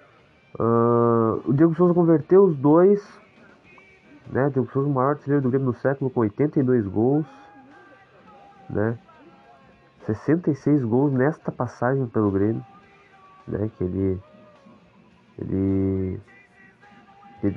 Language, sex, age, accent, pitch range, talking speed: Portuguese, male, 20-39, Brazilian, 115-170 Hz, 110 wpm